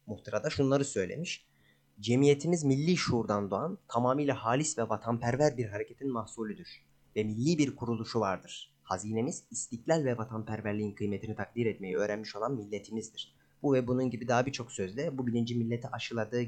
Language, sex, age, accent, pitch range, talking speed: Turkish, male, 30-49, native, 110-135 Hz, 150 wpm